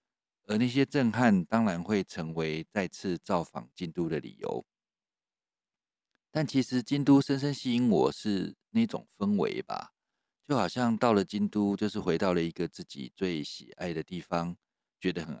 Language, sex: Chinese, male